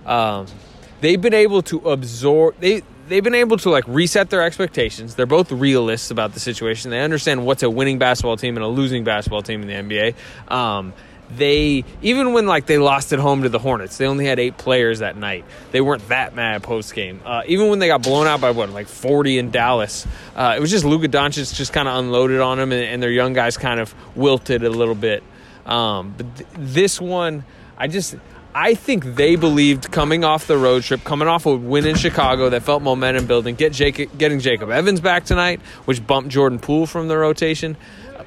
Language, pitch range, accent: English, 120-155 Hz, American